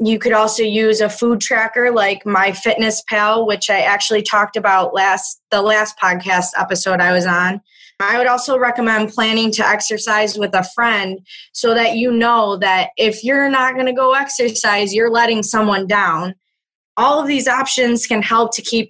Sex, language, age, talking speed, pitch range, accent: female, English, 20-39, 180 wpm, 200-235 Hz, American